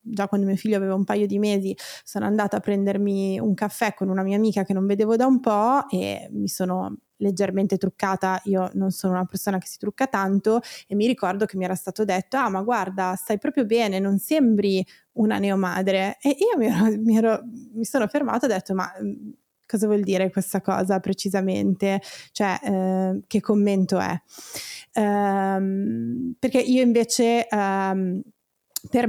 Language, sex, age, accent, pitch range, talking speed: Italian, female, 20-39, native, 195-215 Hz, 170 wpm